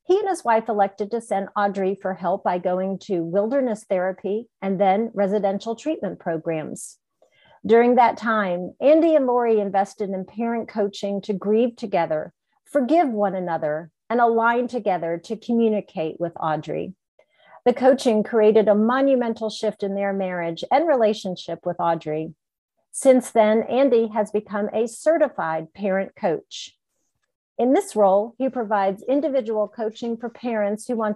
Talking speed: 145 wpm